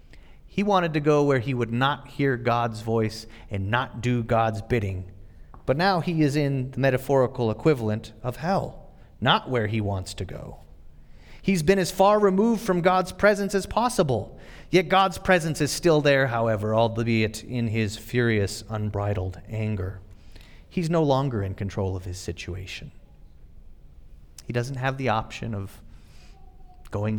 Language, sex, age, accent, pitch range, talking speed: English, male, 30-49, American, 95-135 Hz, 155 wpm